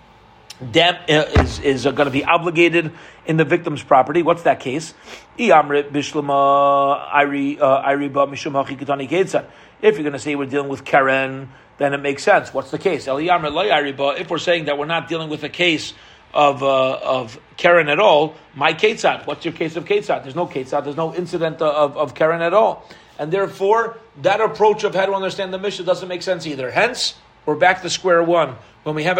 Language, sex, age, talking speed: English, male, 40-59, 180 wpm